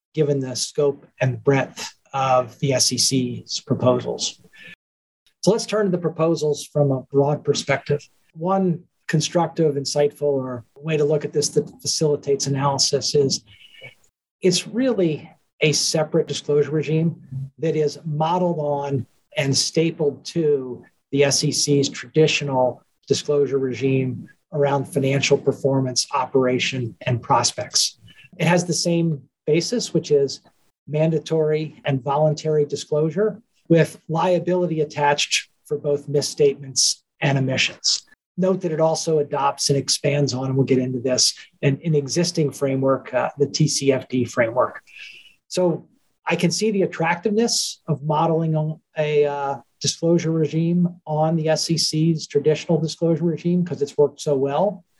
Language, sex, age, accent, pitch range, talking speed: English, male, 40-59, American, 140-165 Hz, 130 wpm